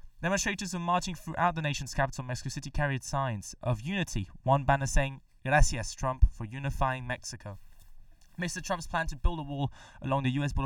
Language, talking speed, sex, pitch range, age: English, 180 wpm, male, 115-145 Hz, 10-29